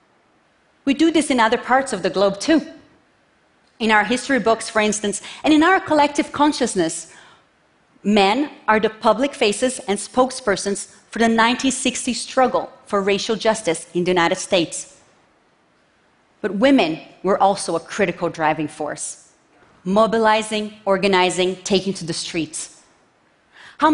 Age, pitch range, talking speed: 30-49, 180-245 Hz, 135 wpm